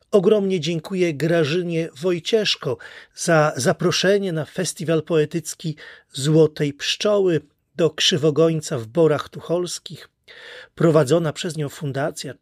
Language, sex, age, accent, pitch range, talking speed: Polish, male, 30-49, native, 150-185 Hz, 95 wpm